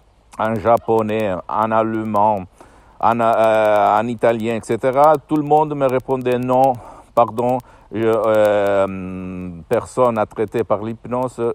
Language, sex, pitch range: Italian, male, 95-115 Hz